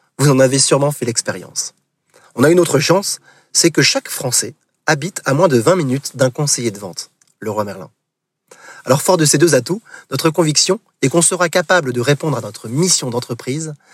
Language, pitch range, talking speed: French, 125-165 Hz, 200 wpm